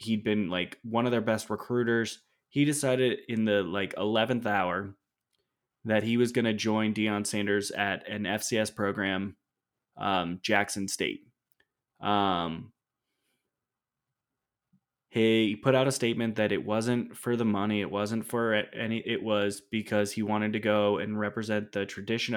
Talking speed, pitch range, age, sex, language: 155 wpm, 100-115 Hz, 20-39, male, English